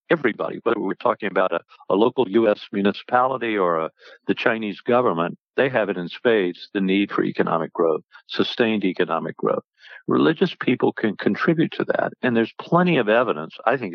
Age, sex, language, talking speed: 60-79, male, English, 170 wpm